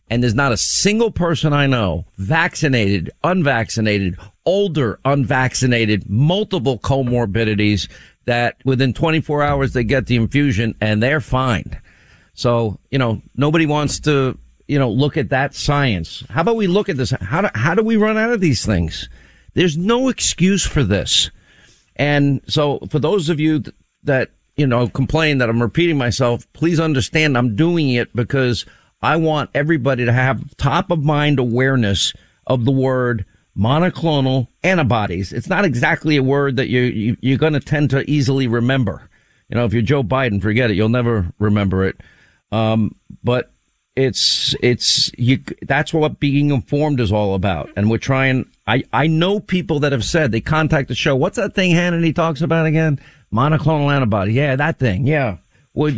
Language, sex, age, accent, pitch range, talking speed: English, male, 50-69, American, 115-155 Hz, 170 wpm